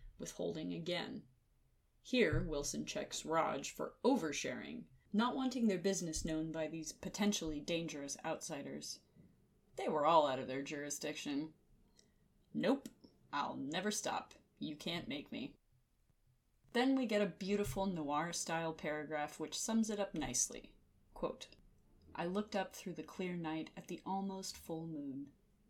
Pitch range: 150-200 Hz